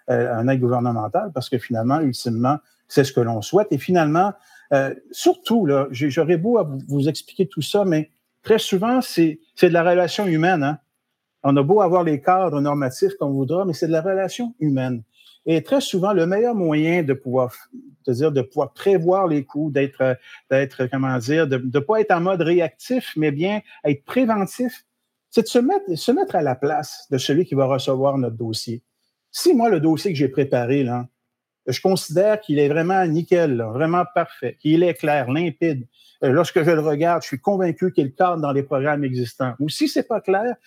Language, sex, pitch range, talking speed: French, male, 135-195 Hz, 185 wpm